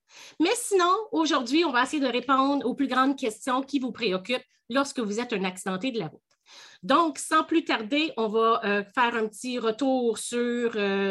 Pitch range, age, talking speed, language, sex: 220-300 Hz, 30-49, 195 wpm, French, female